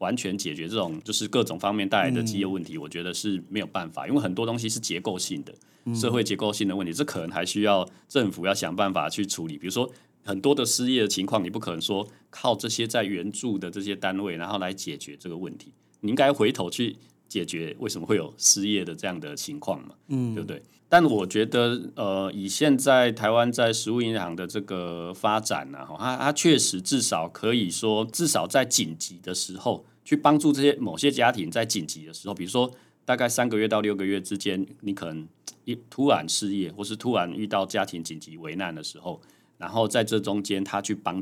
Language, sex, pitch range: Chinese, male, 95-120 Hz